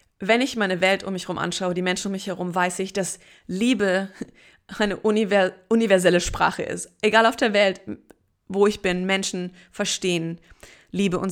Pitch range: 180-220 Hz